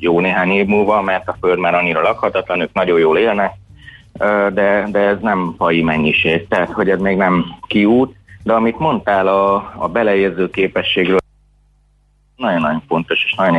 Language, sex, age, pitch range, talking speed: Hungarian, male, 30-49, 85-105 Hz, 165 wpm